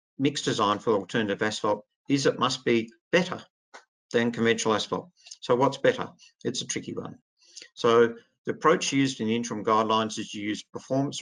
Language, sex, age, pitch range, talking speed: English, male, 50-69, 110-150 Hz, 165 wpm